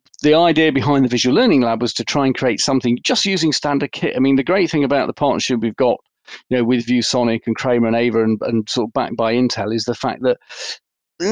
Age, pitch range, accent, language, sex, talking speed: 40-59, 120-140 Hz, British, English, male, 250 wpm